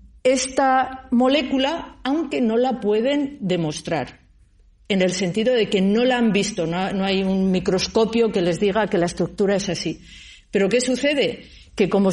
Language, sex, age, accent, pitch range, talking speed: Spanish, female, 50-69, Spanish, 185-250 Hz, 165 wpm